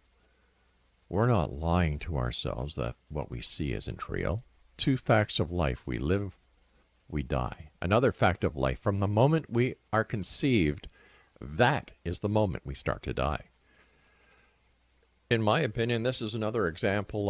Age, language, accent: 50-69, English, American